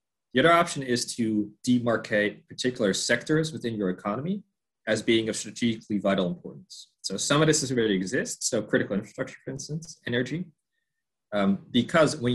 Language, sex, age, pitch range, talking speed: English, male, 20-39, 105-150 Hz, 160 wpm